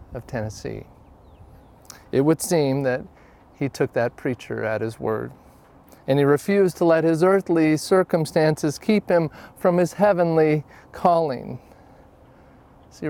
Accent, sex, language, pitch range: American, male, English, 105-165 Hz